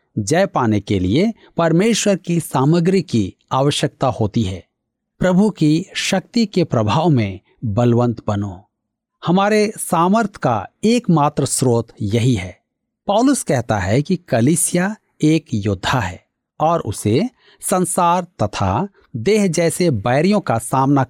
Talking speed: 120 wpm